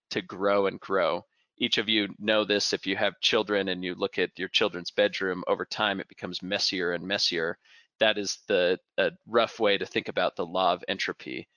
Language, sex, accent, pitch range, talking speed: English, male, American, 100-115 Hz, 205 wpm